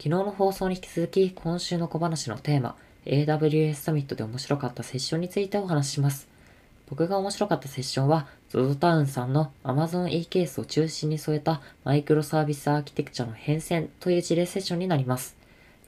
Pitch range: 130-165 Hz